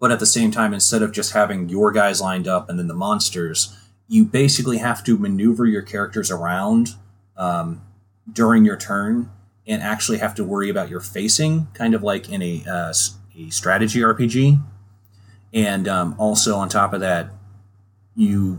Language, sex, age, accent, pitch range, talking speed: English, male, 30-49, American, 100-115 Hz, 175 wpm